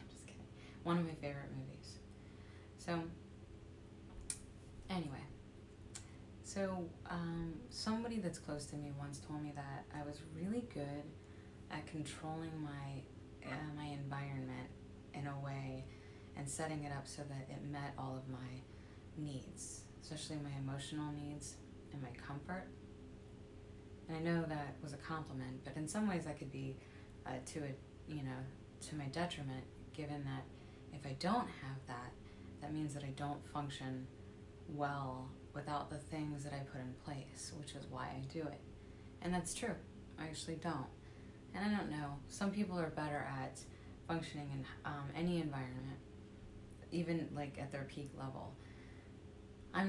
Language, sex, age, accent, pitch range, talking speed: English, female, 20-39, American, 105-150 Hz, 155 wpm